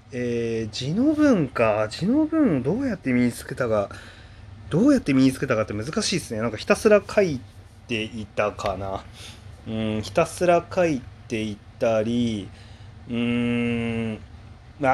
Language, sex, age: Japanese, male, 30-49